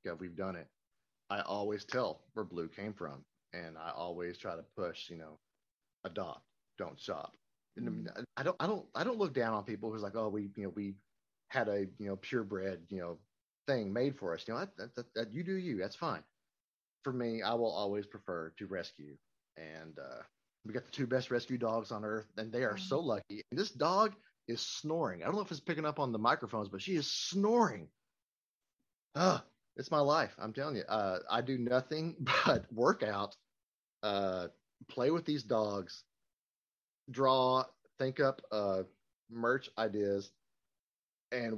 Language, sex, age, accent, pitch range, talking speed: English, male, 30-49, American, 95-125 Hz, 185 wpm